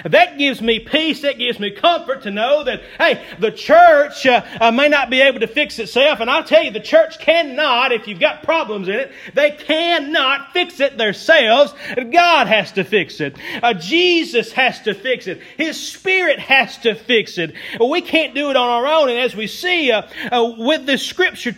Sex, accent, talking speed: male, American, 205 wpm